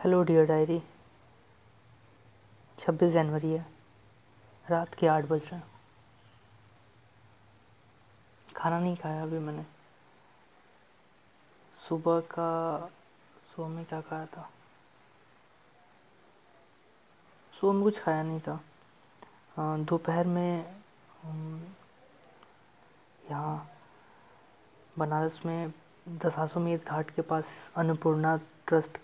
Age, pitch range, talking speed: 20-39, 145-165 Hz, 80 wpm